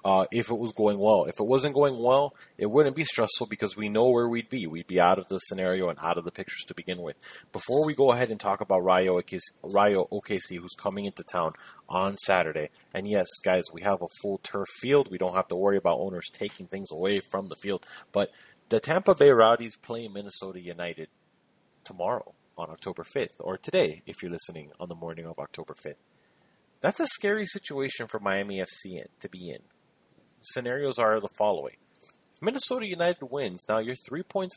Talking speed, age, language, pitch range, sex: 205 wpm, 30-49, English, 95-145 Hz, male